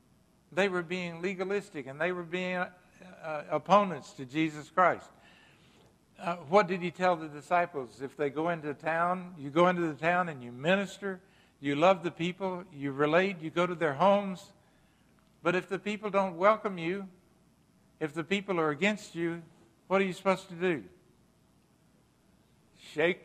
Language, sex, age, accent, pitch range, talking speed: English, male, 60-79, American, 140-185 Hz, 165 wpm